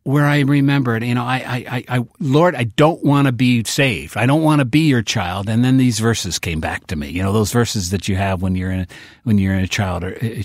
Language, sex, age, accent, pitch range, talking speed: English, male, 50-69, American, 105-130 Hz, 270 wpm